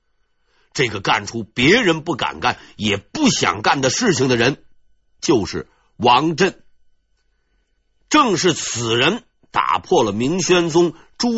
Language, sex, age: Chinese, male, 50-69